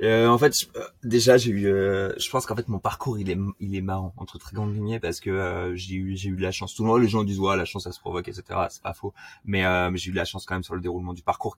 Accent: French